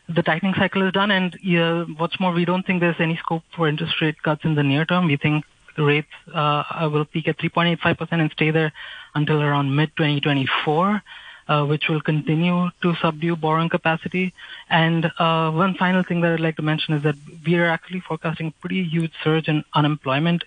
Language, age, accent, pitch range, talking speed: English, 20-39, Indian, 150-170 Hz, 195 wpm